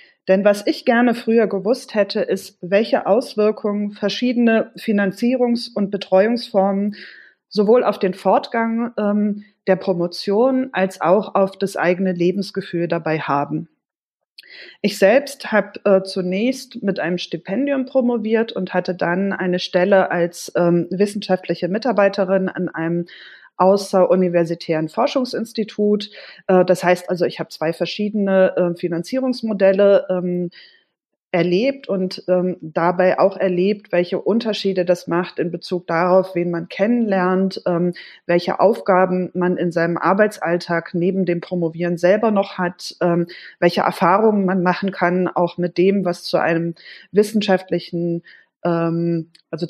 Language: German